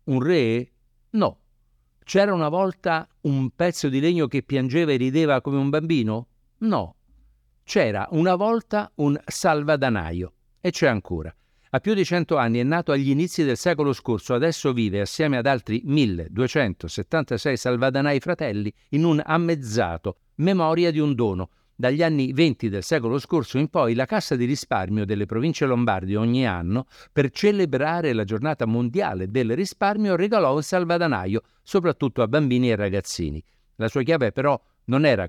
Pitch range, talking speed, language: 115-165 Hz, 155 wpm, Italian